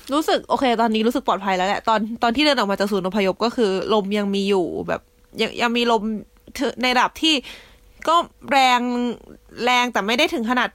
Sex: female